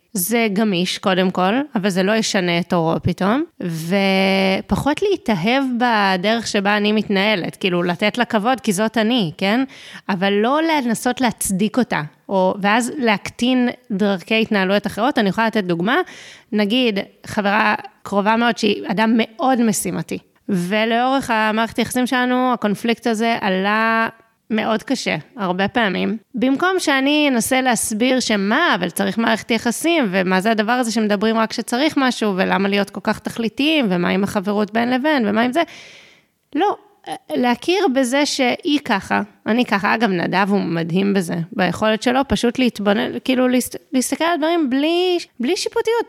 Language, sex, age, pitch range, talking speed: Hebrew, female, 20-39, 205-260 Hz, 145 wpm